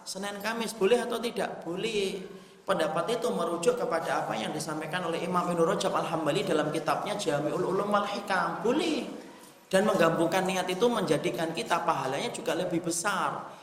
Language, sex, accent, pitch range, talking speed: Indonesian, male, native, 165-210 Hz, 145 wpm